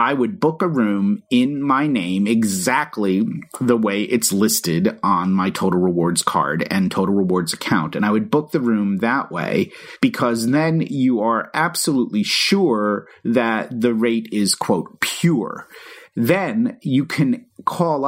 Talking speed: 155 wpm